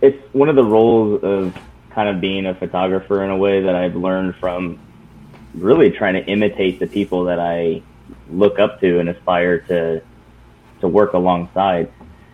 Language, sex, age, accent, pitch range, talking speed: English, male, 20-39, American, 85-95 Hz, 170 wpm